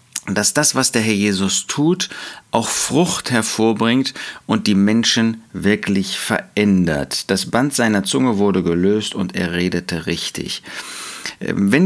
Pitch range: 100-140 Hz